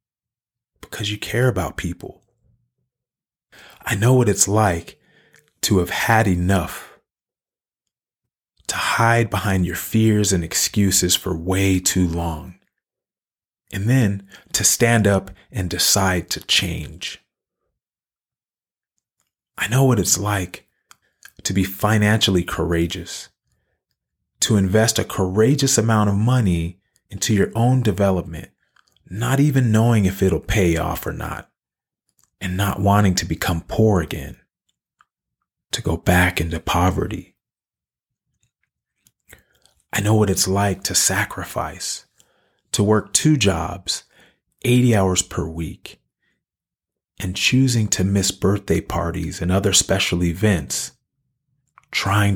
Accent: American